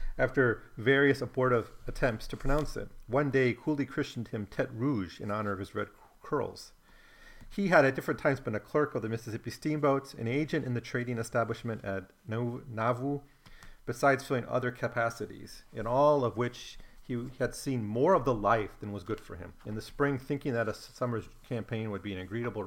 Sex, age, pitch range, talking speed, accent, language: male, 40-59, 105-135 Hz, 195 wpm, American, English